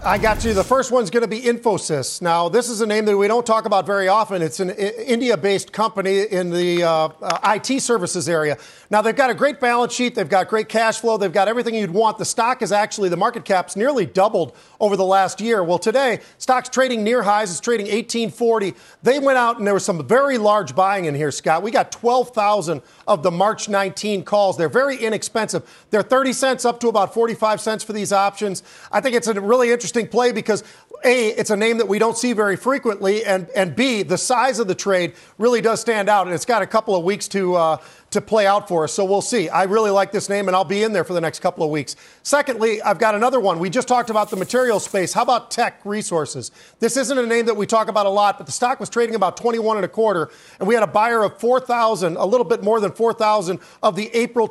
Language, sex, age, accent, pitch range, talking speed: English, male, 40-59, American, 190-230 Hz, 255 wpm